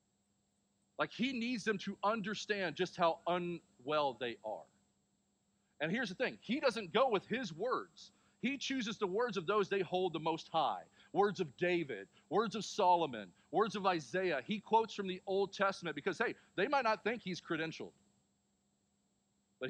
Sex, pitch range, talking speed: male, 165-215 Hz, 170 wpm